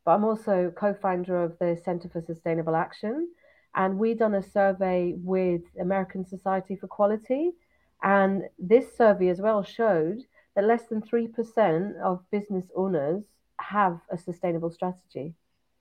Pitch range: 170-215 Hz